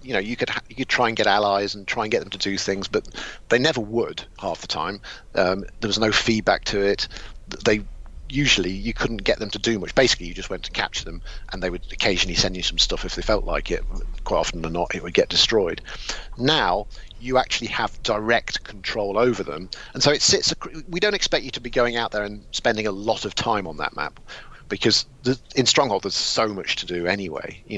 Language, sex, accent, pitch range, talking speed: German, male, British, 90-120 Hz, 240 wpm